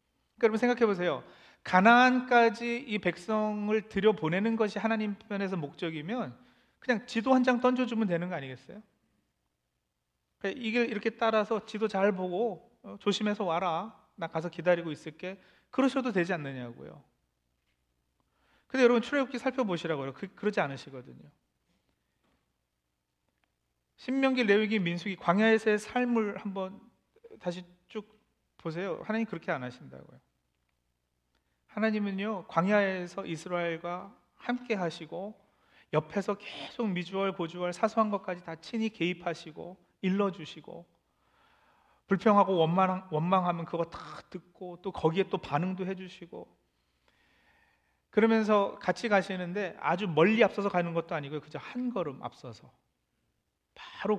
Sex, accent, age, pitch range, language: male, native, 40-59, 155-215 Hz, Korean